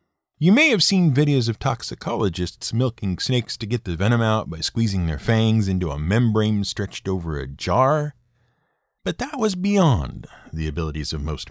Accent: American